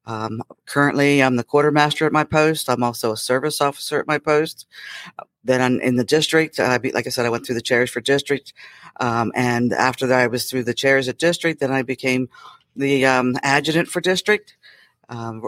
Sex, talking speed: female, 210 wpm